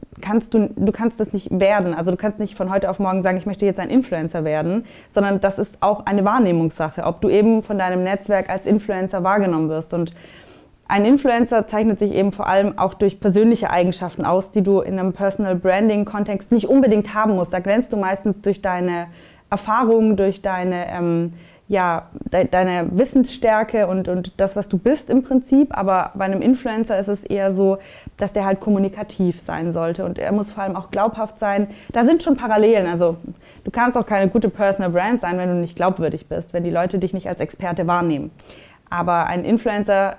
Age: 20-39